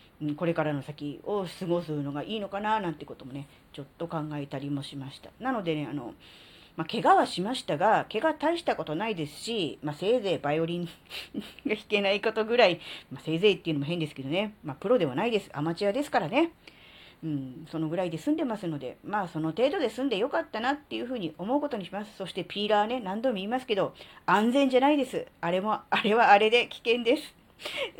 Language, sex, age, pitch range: Japanese, female, 40-59, 160-235 Hz